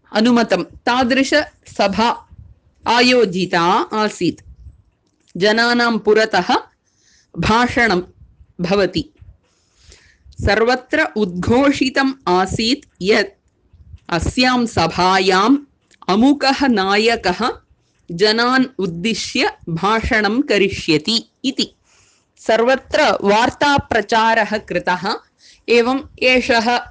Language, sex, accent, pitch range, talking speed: English, female, Indian, 200-265 Hz, 60 wpm